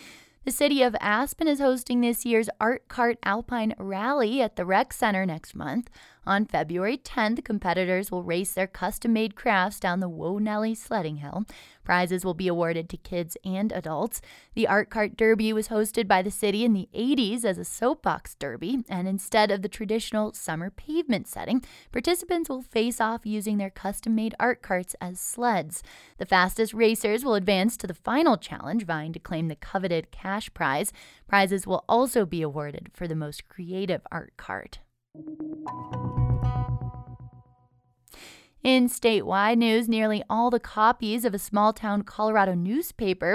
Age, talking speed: 20-39, 160 wpm